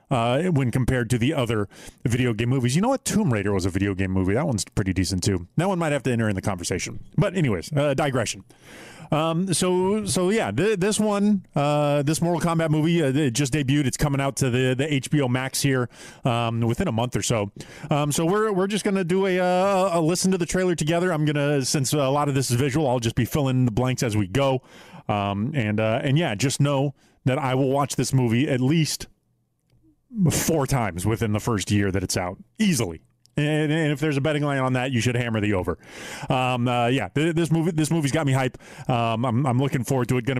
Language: English